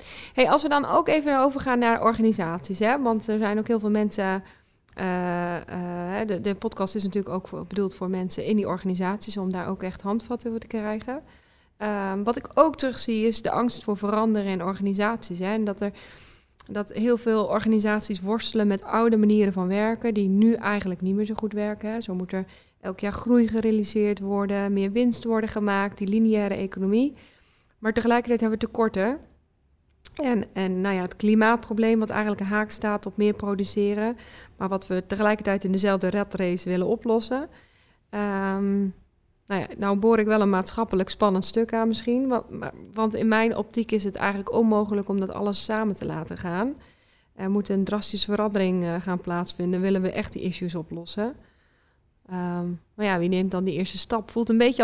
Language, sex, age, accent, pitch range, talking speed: Dutch, female, 20-39, Dutch, 195-225 Hz, 190 wpm